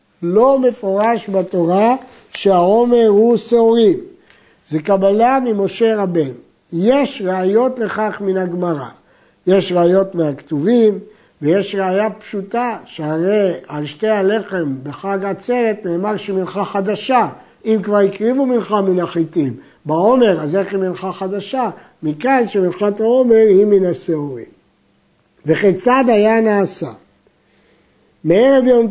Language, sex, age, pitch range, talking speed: Hebrew, male, 60-79, 185-230 Hz, 110 wpm